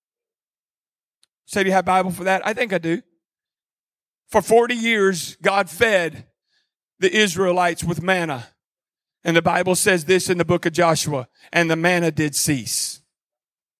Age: 40-59